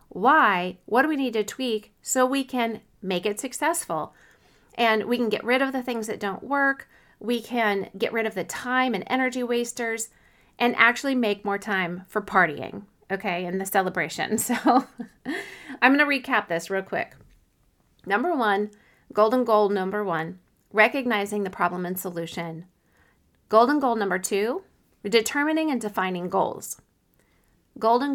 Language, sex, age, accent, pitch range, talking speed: English, female, 40-59, American, 195-250 Hz, 155 wpm